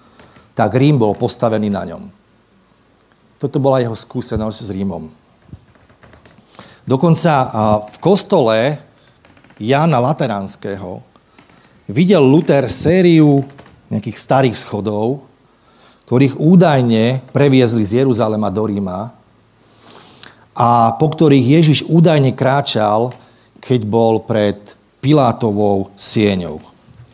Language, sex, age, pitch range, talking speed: Slovak, male, 40-59, 110-150 Hz, 90 wpm